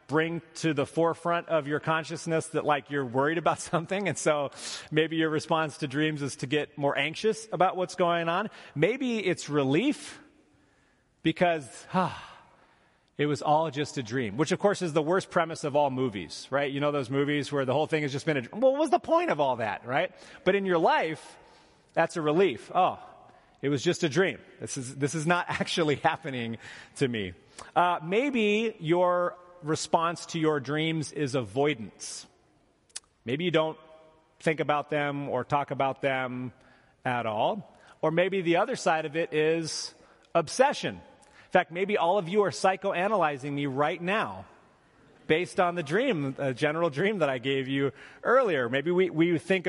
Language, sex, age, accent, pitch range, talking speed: English, male, 30-49, American, 145-175 Hz, 180 wpm